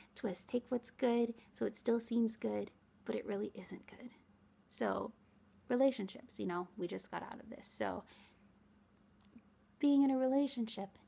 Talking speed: 155 wpm